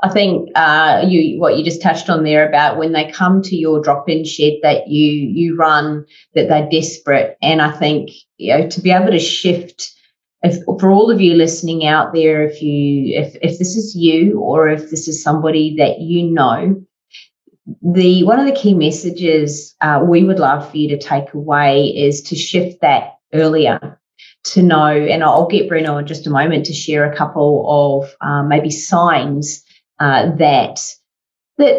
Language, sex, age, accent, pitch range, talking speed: English, female, 30-49, Australian, 150-175 Hz, 185 wpm